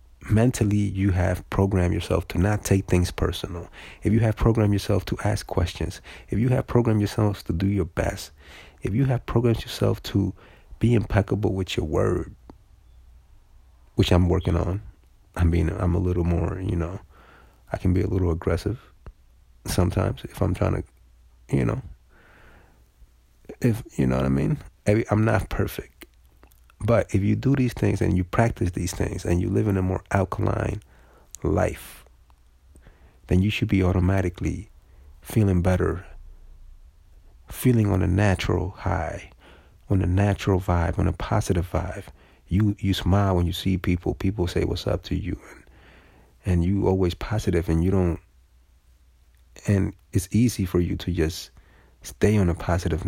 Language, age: English, 30-49